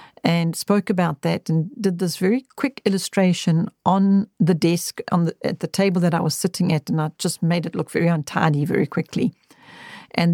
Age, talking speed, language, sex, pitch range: 50-69, 195 wpm, English, female, 175-210 Hz